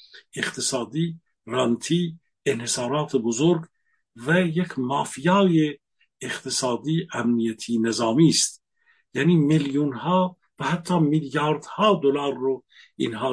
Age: 50-69